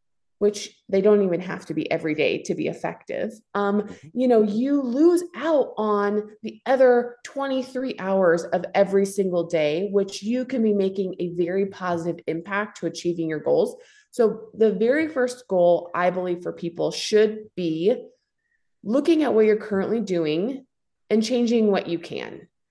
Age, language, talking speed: 20-39, English, 165 wpm